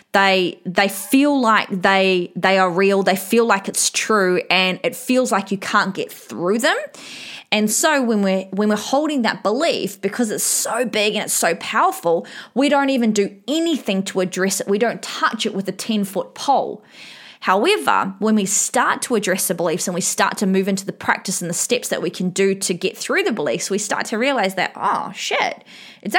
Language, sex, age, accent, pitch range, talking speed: English, female, 20-39, Australian, 185-225 Hz, 210 wpm